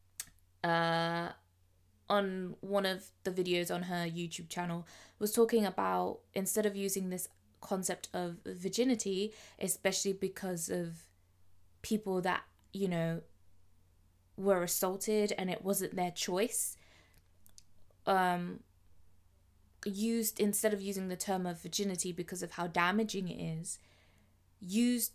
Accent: British